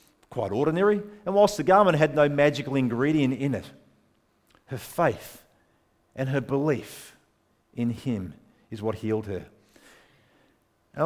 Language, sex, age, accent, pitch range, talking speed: English, male, 40-59, Australian, 130-185 Hz, 130 wpm